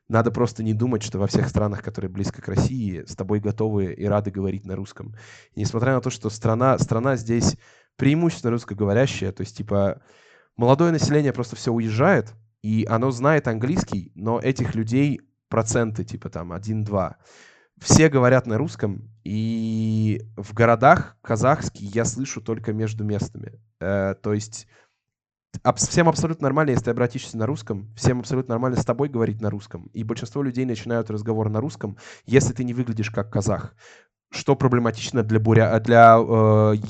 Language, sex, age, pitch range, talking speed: Russian, male, 20-39, 105-125 Hz, 160 wpm